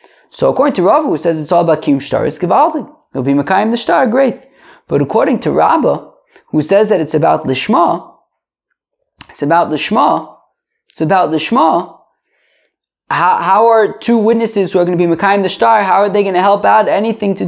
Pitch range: 170-235 Hz